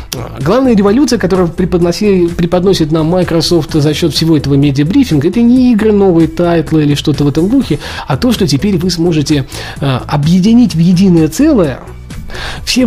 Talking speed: 150 wpm